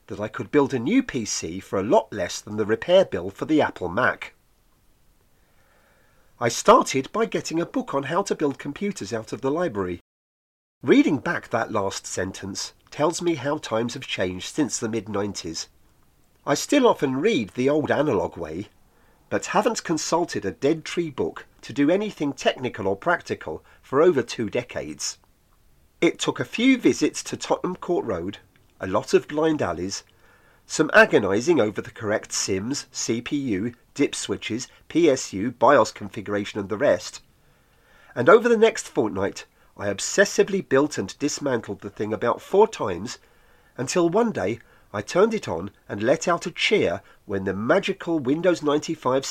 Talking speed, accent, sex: 165 wpm, British, male